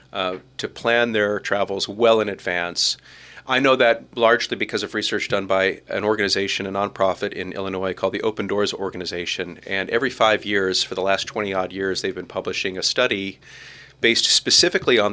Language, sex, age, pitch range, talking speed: English, male, 40-59, 95-115 Hz, 185 wpm